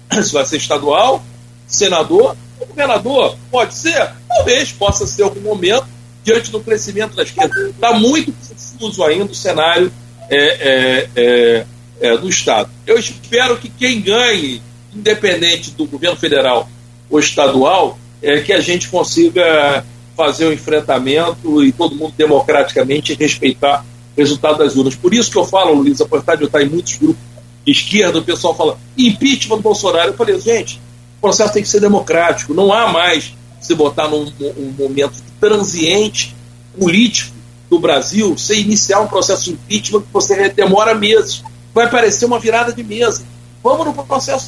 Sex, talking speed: male, 165 wpm